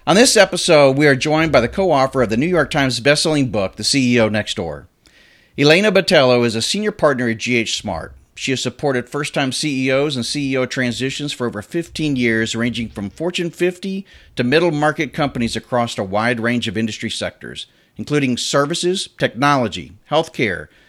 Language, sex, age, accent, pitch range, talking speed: English, male, 40-59, American, 115-150 Hz, 170 wpm